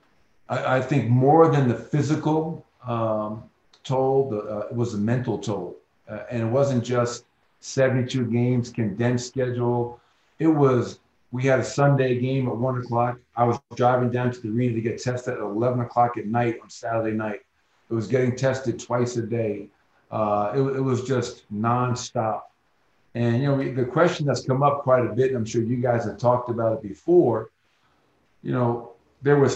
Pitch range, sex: 115-130 Hz, male